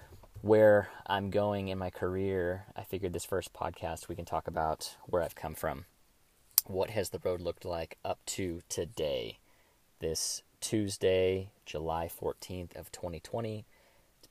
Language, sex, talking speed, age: English, male, 145 wpm, 20-39